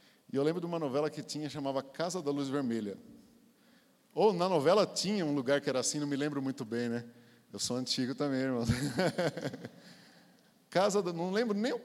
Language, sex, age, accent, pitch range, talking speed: Portuguese, male, 50-69, Brazilian, 145-190 Hz, 170 wpm